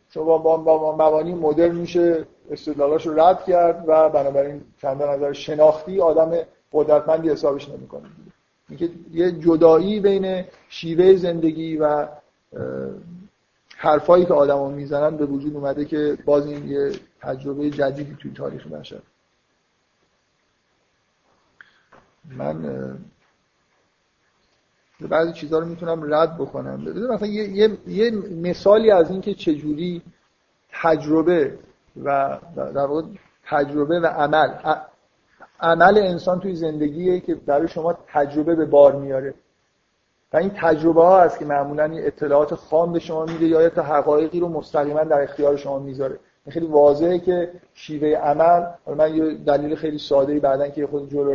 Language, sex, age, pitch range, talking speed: Persian, male, 50-69, 145-170 Hz, 130 wpm